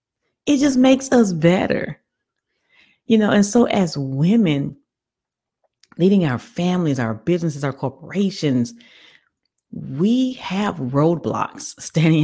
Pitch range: 140-230 Hz